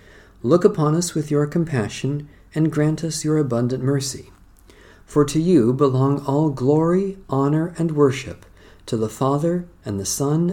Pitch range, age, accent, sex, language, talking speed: 100-145 Hz, 40-59, American, male, English, 155 wpm